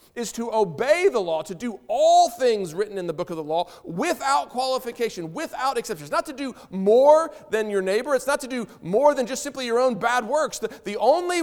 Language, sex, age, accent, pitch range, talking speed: English, male, 40-59, American, 140-230 Hz, 225 wpm